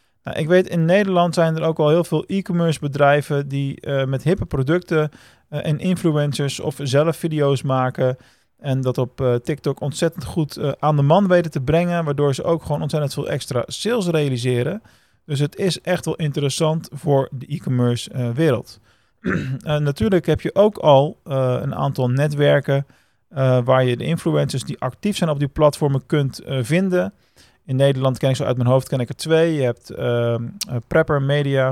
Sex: male